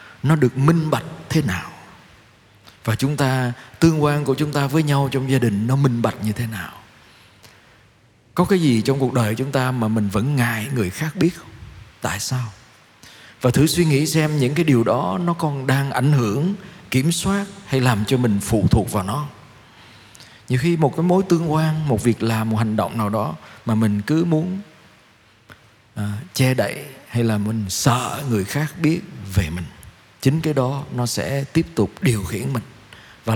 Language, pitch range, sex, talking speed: Vietnamese, 110-145 Hz, male, 195 wpm